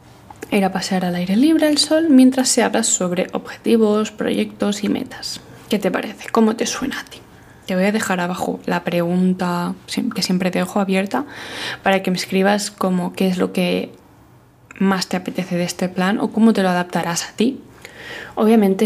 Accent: Spanish